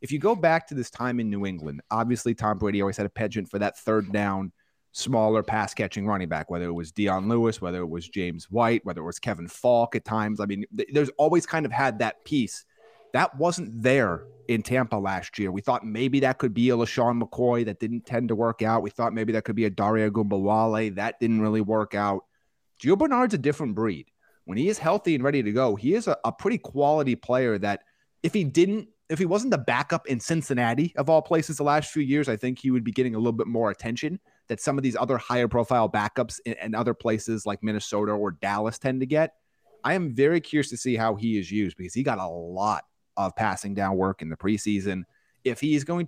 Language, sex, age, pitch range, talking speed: English, male, 30-49, 105-140 Hz, 235 wpm